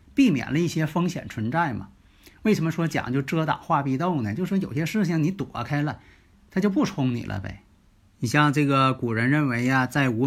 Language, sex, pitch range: Chinese, male, 115-170 Hz